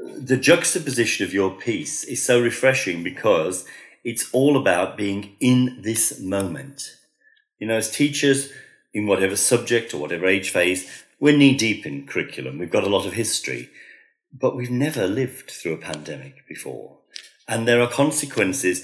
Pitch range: 95-130 Hz